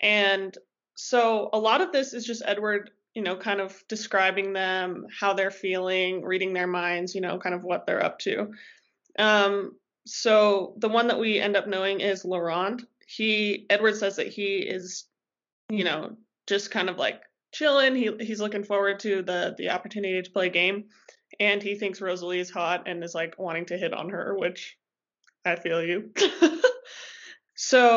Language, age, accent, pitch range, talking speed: English, 20-39, American, 190-230 Hz, 180 wpm